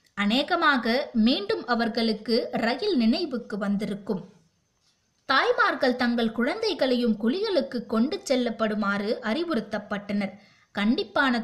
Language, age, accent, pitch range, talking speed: Tamil, 20-39, native, 215-270 Hz, 70 wpm